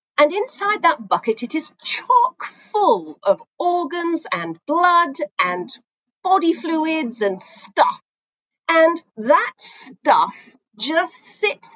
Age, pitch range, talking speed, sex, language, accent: 40-59, 195-320 Hz, 110 wpm, female, English, British